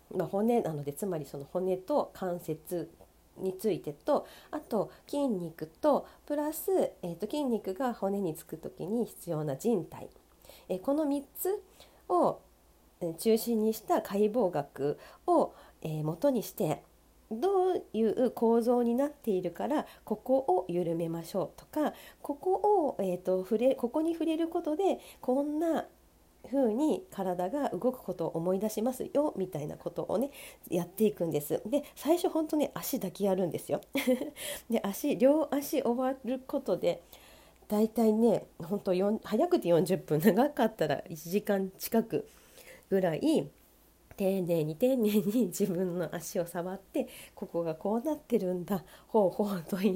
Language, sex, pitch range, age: Japanese, female, 180-275 Hz, 40-59